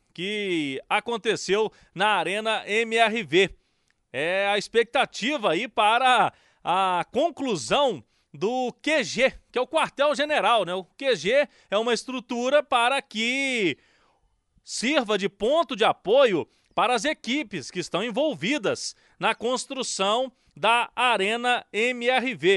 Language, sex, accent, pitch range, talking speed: Portuguese, male, Brazilian, 195-265 Hz, 110 wpm